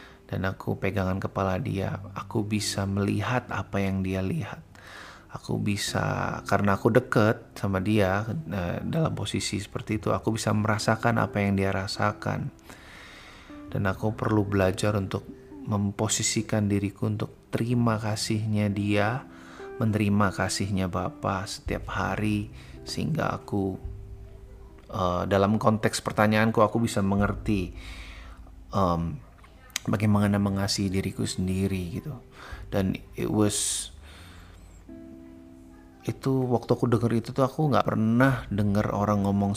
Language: Indonesian